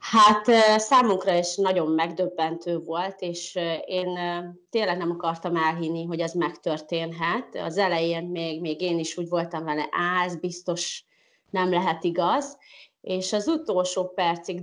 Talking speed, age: 140 wpm, 30-49